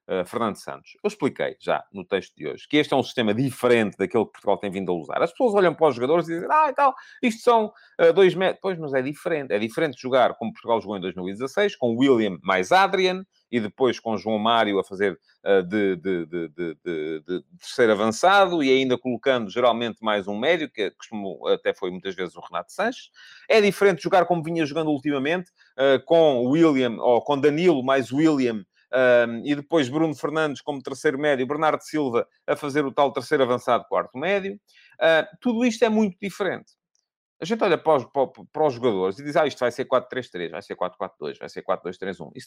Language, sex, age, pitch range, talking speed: Portuguese, male, 30-49, 120-185 Hz, 210 wpm